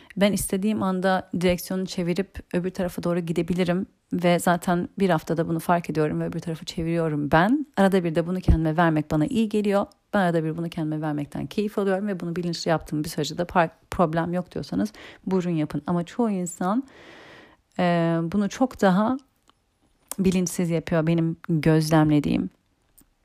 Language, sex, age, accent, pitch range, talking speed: Turkish, female, 40-59, native, 165-205 Hz, 155 wpm